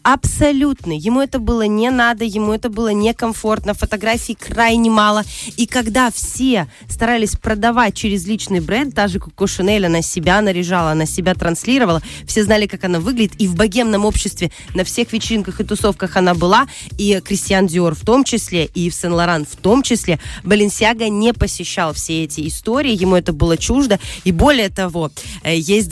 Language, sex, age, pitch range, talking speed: Russian, female, 20-39, 180-230 Hz, 170 wpm